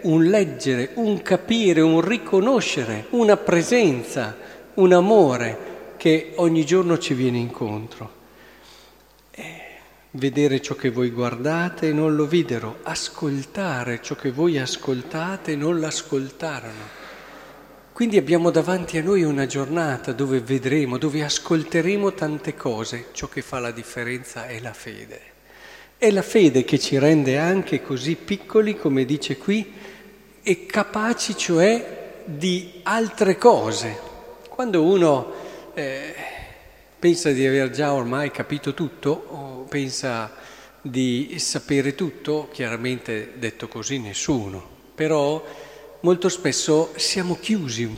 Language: Italian